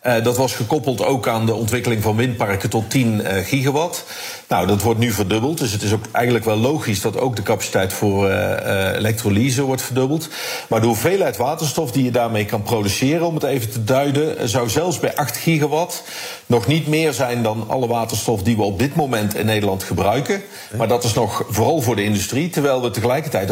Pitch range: 110-135 Hz